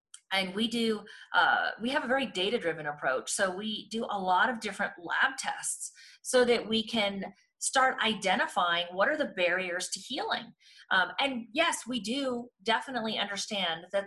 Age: 30-49